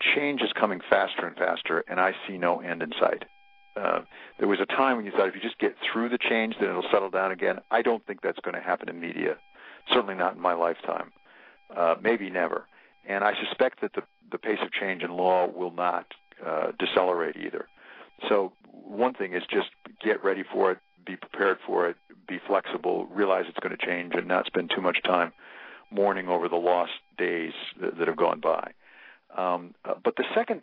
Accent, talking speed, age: American, 210 wpm, 60-79